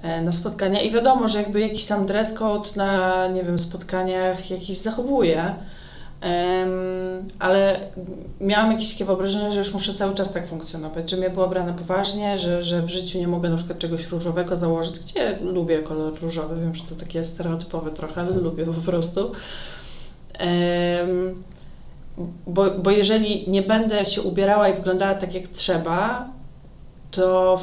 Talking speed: 160 wpm